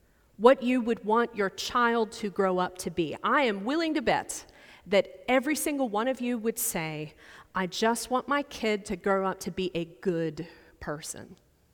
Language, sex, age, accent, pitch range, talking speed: English, female, 30-49, American, 195-270 Hz, 190 wpm